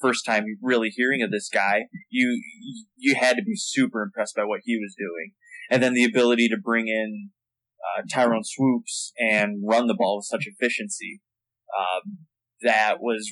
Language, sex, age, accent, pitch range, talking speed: English, male, 20-39, American, 110-125 Hz, 175 wpm